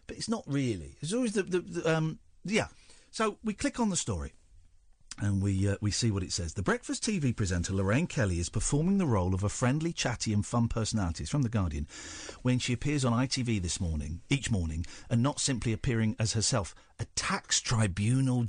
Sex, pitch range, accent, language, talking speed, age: male, 100-155 Hz, British, English, 210 wpm, 50-69